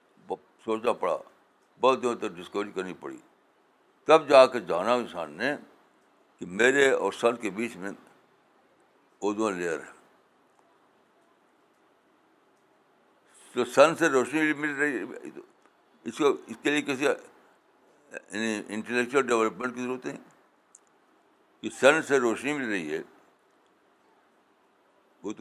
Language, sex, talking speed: Urdu, male, 120 wpm